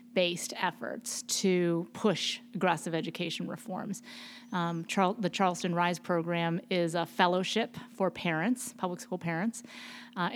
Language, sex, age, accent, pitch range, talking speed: English, female, 30-49, American, 180-215 Hz, 120 wpm